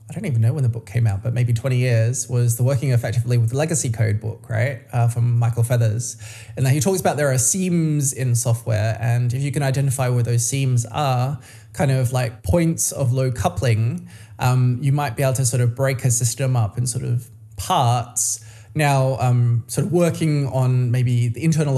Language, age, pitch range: English, 20-39, 115-135 Hz